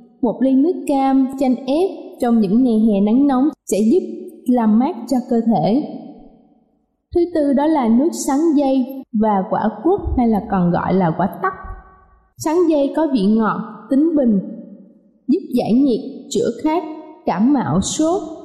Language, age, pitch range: Vietnamese, 20-39, 230-300 Hz